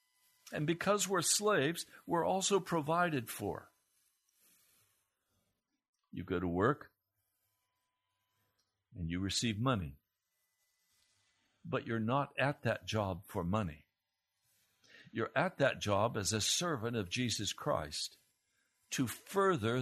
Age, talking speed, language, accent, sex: 60-79, 110 wpm, English, American, male